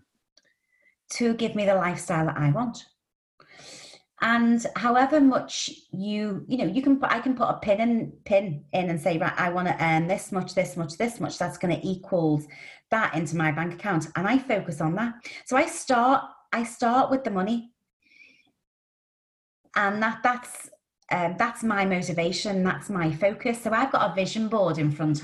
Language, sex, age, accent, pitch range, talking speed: English, female, 30-49, British, 170-235 Hz, 185 wpm